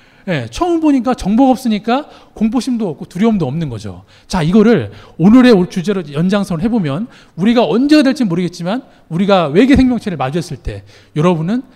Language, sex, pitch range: Korean, male, 140-230 Hz